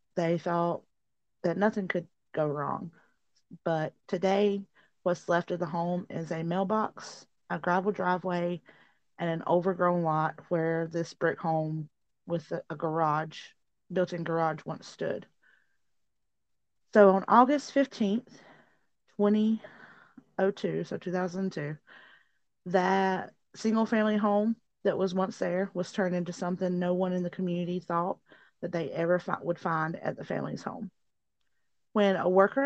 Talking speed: 135 wpm